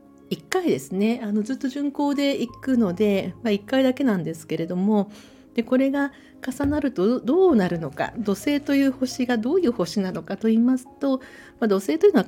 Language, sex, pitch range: Japanese, female, 180-255 Hz